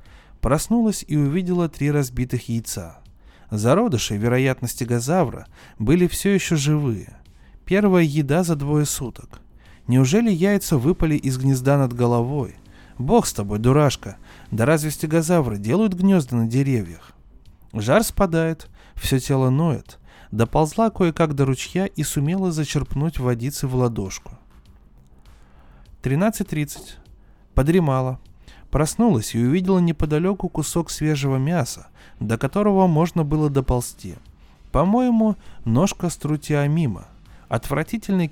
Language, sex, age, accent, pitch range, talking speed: Russian, male, 20-39, native, 120-170 Hz, 110 wpm